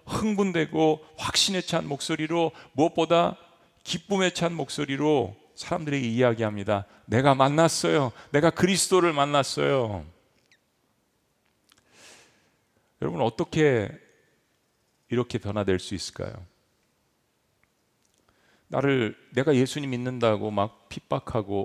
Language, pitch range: Korean, 110-170 Hz